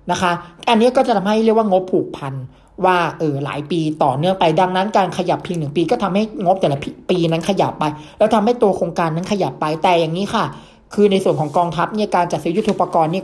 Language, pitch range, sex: Thai, 160-195 Hz, male